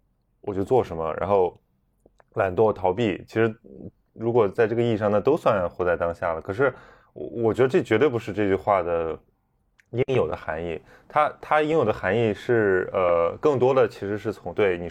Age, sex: 20-39, male